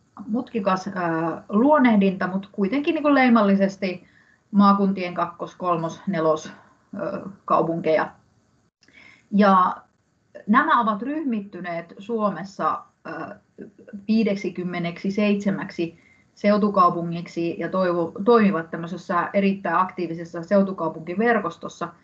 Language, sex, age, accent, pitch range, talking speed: Finnish, female, 30-49, native, 170-210 Hz, 75 wpm